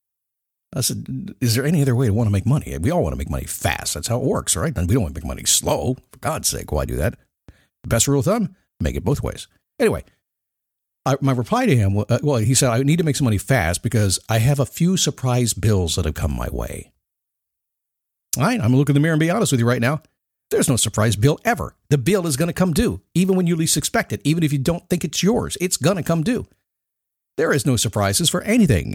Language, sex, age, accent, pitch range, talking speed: English, male, 50-69, American, 110-175 Hz, 255 wpm